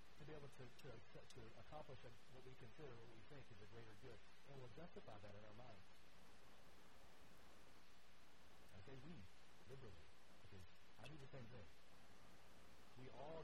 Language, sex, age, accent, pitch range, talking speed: English, male, 60-79, American, 90-130 Hz, 150 wpm